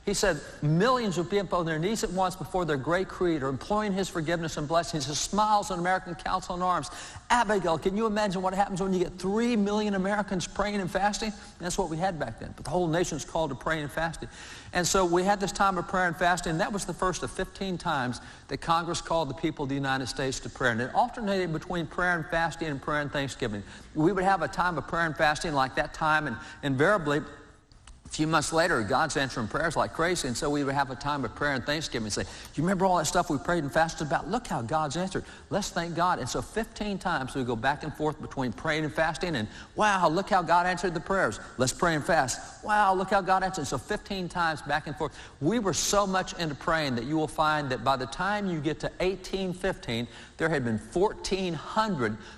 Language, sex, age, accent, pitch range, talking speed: English, male, 60-79, American, 140-190 Hz, 240 wpm